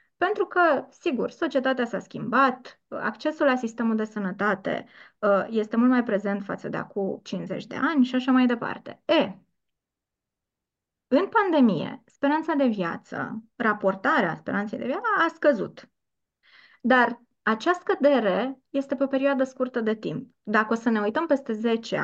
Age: 20-39